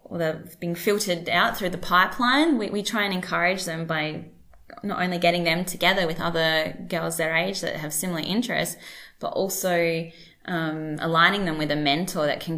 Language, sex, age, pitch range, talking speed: English, female, 20-39, 155-185 Hz, 185 wpm